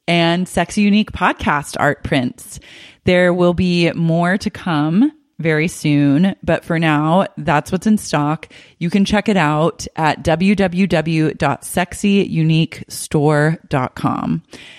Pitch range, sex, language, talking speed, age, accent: 145-180 Hz, female, English, 115 wpm, 20-39, American